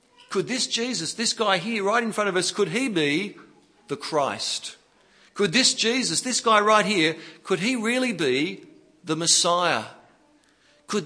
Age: 50-69